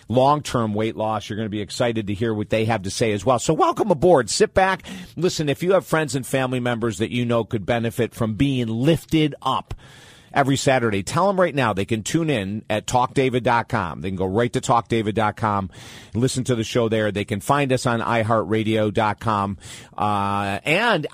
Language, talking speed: English, 200 wpm